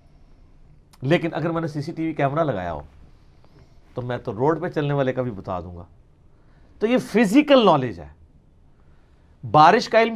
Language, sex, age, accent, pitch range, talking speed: English, male, 40-59, Indian, 140-210 Hz, 155 wpm